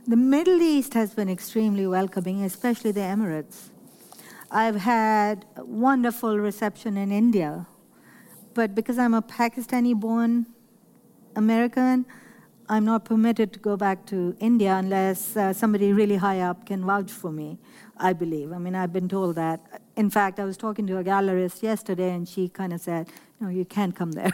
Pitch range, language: 190-230 Hz, English